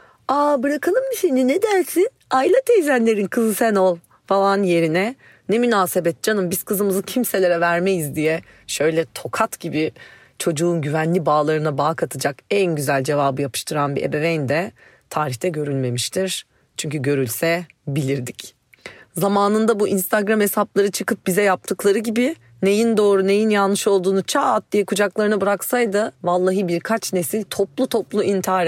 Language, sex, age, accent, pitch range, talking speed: Turkish, female, 40-59, native, 175-235 Hz, 135 wpm